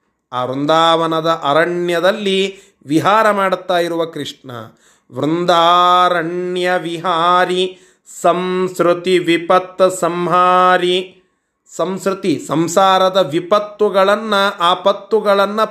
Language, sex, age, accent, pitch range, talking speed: Kannada, male, 30-49, native, 160-200 Hz, 65 wpm